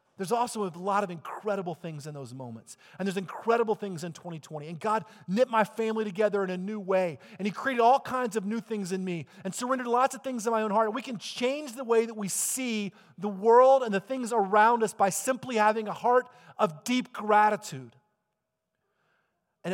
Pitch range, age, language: 150-210 Hz, 40-59, English